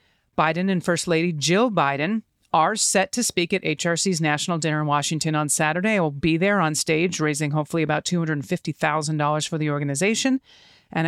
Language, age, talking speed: English, 40-59, 175 wpm